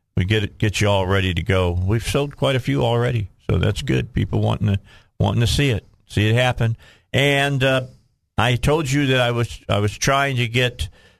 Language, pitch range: English, 100-125 Hz